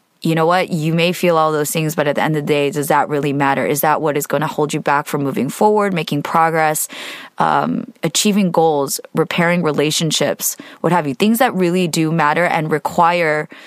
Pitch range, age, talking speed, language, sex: 150-180 Hz, 20-39, 215 wpm, English, female